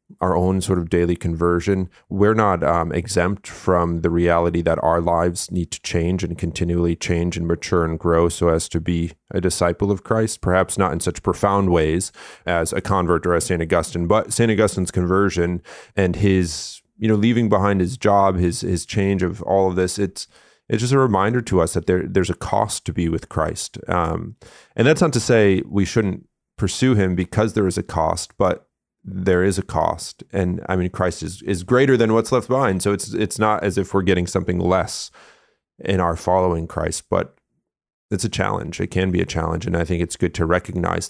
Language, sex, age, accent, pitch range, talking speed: English, male, 30-49, American, 85-100 Hz, 210 wpm